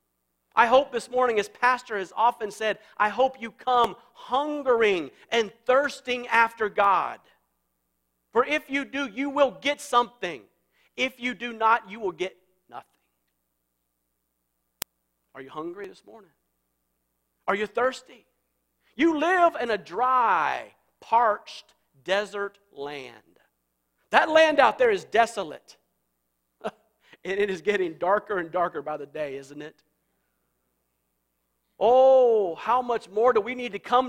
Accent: American